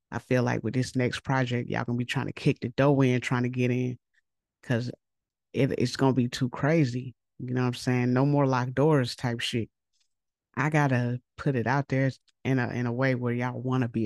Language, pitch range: English, 120-140 Hz